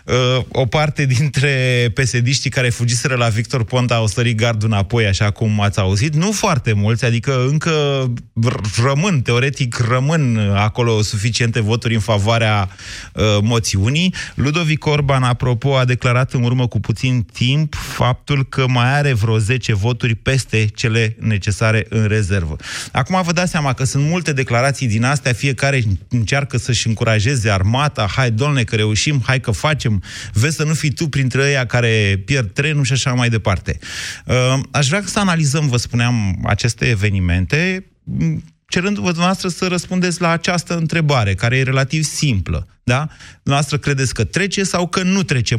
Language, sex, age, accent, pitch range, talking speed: Romanian, male, 30-49, native, 110-145 Hz, 155 wpm